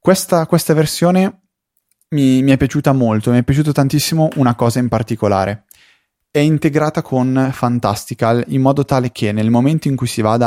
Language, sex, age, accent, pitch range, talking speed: Italian, male, 20-39, native, 105-135 Hz, 170 wpm